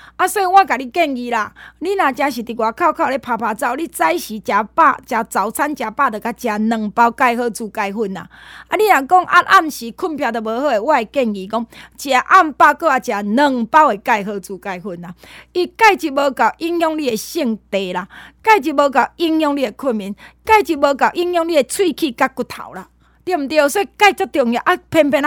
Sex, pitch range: female, 235-330 Hz